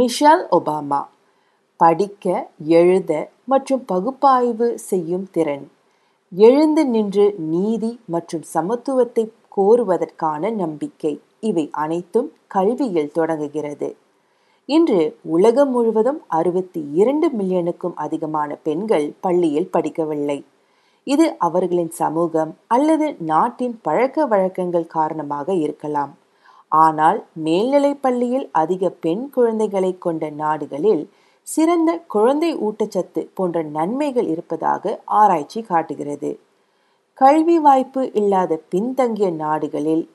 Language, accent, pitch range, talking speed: Tamil, native, 160-250 Hz, 85 wpm